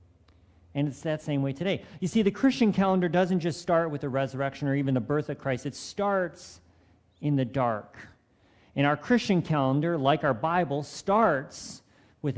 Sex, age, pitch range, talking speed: male, 50-69, 130-160 Hz, 180 wpm